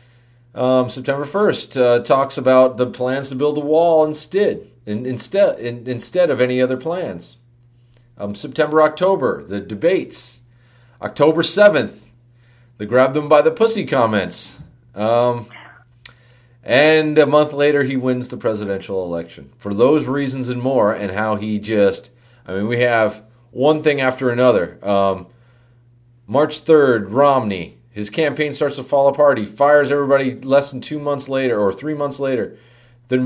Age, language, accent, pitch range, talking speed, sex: 40-59, English, American, 115-145 Hz, 145 wpm, male